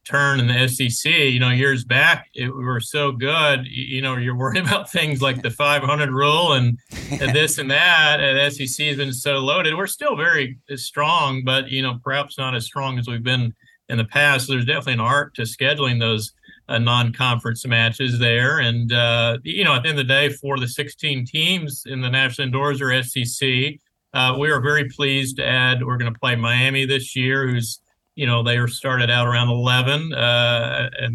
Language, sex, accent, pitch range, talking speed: English, male, American, 120-140 Hz, 210 wpm